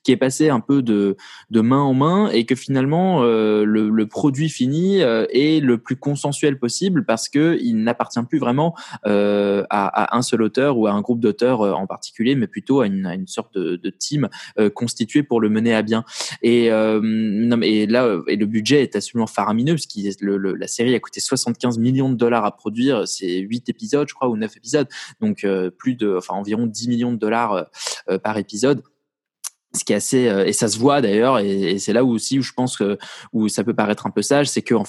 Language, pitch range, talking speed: French, 110-135 Hz, 235 wpm